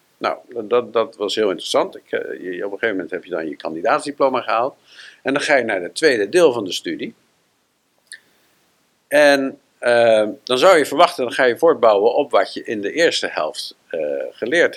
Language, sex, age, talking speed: Dutch, male, 50-69, 200 wpm